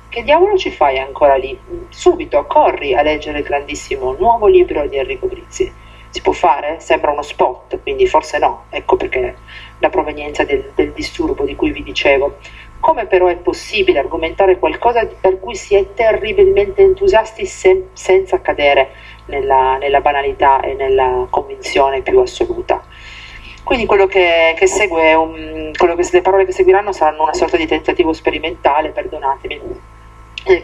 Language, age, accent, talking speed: Italian, 40-59, native, 155 wpm